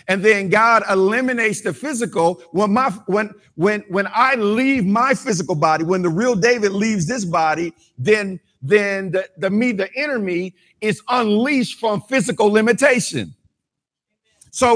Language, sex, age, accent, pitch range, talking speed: English, male, 50-69, American, 170-225 Hz, 150 wpm